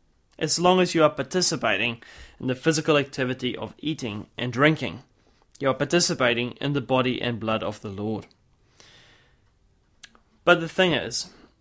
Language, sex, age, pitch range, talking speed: English, male, 30-49, 115-155 Hz, 150 wpm